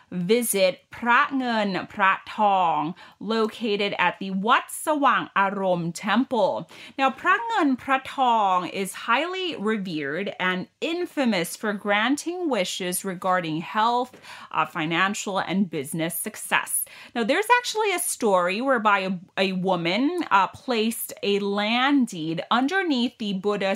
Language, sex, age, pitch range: Thai, female, 30-49, 190-265 Hz